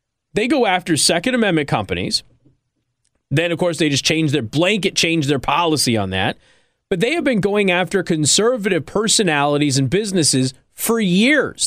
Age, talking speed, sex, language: 30-49, 160 wpm, male, English